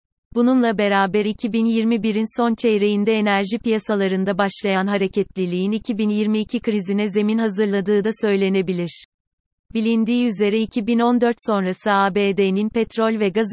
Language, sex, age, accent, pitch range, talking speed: Turkish, female, 30-49, native, 195-220 Hz, 100 wpm